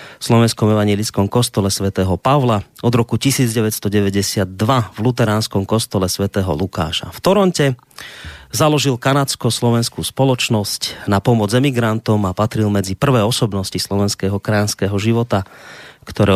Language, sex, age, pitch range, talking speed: Slovak, male, 30-49, 100-130 Hz, 115 wpm